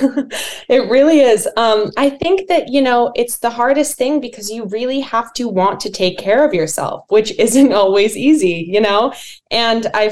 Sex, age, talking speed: female, 20-39, 190 wpm